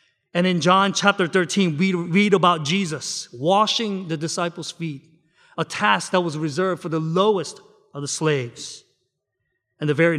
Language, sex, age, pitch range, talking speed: English, male, 30-49, 140-190 Hz, 160 wpm